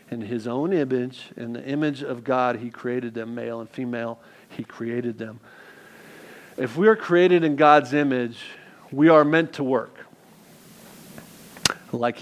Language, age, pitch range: English, 50-69, 125-155 Hz